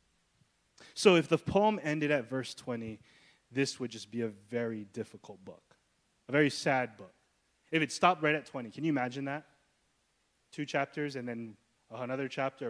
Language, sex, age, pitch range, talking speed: English, male, 20-39, 135-180 Hz, 170 wpm